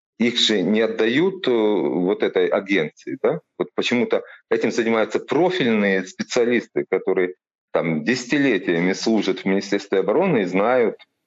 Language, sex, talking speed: Ukrainian, male, 120 wpm